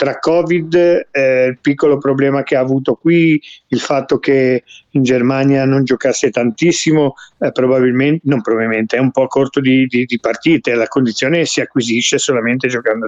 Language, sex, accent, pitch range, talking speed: Italian, male, native, 125-155 Hz, 165 wpm